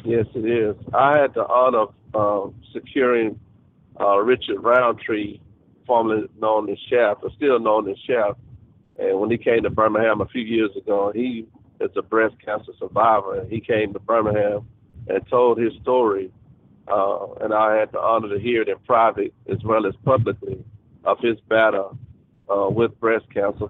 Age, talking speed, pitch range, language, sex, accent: 50-69, 170 wpm, 110-130 Hz, English, male, American